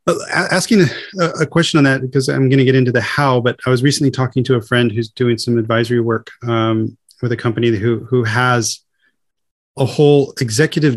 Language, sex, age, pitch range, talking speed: English, male, 30-49, 120-145 Hz, 210 wpm